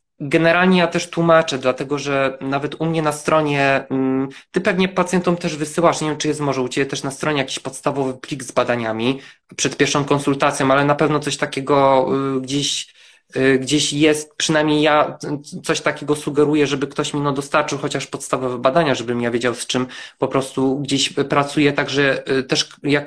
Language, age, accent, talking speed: Polish, 20-39, native, 175 wpm